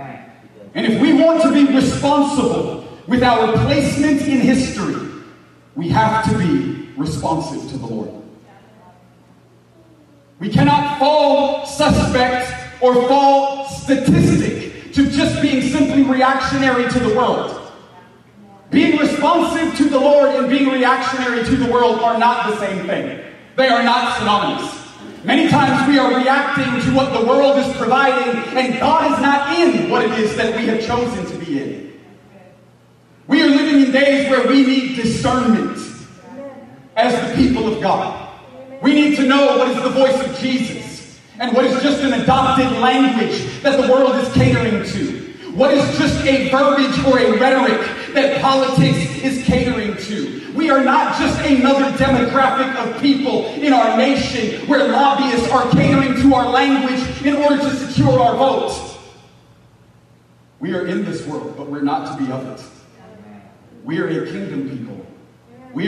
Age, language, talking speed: 30-49, English, 160 wpm